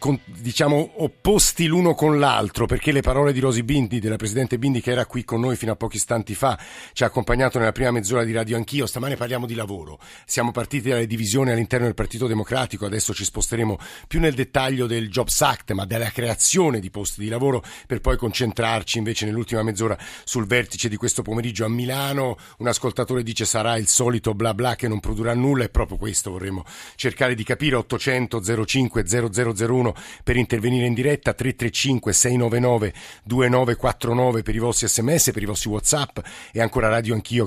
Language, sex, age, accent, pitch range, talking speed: Italian, male, 50-69, native, 115-130 Hz, 185 wpm